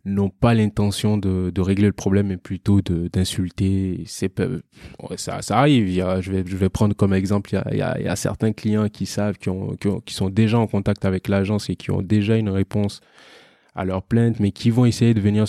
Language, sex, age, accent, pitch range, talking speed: French, male, 20-39, French, 95-110 Hz, 235 wpm